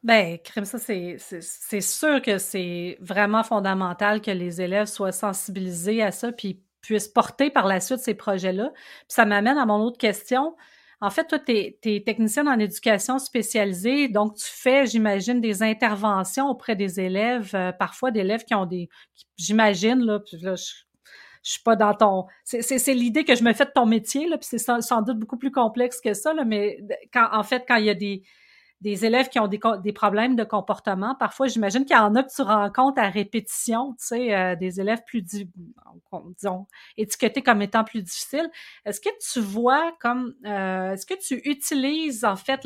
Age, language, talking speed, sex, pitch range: 40-59, French, 200 wpm, female, 205-255 Hz